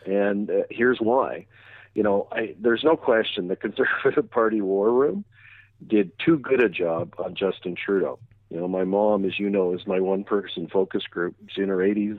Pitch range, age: 95-110 Hz, 50-69